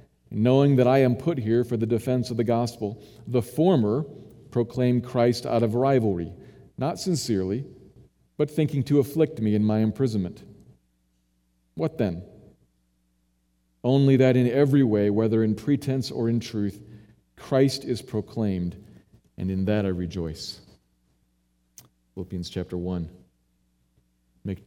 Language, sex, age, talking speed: English, male, 40-59, 130 wpm